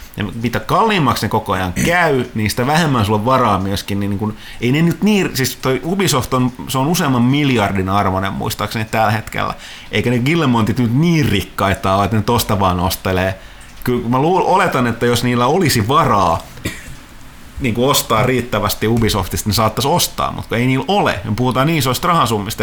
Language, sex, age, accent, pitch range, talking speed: Finnish, male, 30-49, native, 100-135 Hz, 155 wpm